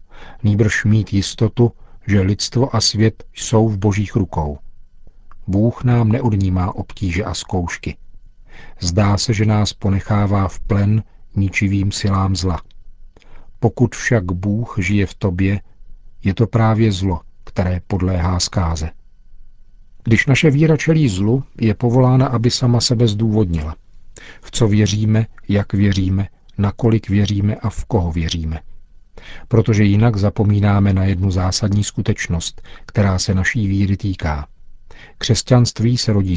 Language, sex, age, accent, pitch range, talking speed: Czech, male, 50-69, native, 95-115 Hz, 125 wpm